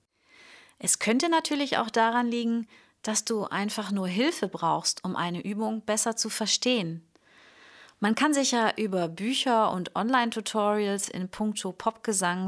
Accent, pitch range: German, 195-245 Hz